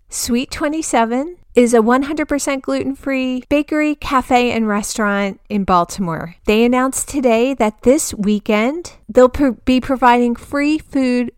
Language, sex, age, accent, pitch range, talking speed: English, female, 30-49, American, 195-245 Hz, 120 wpm